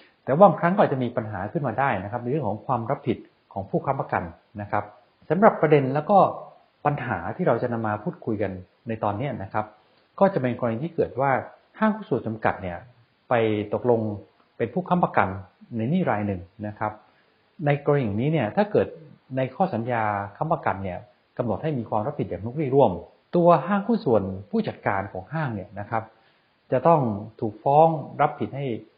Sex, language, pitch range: male, English, 105-155 Hz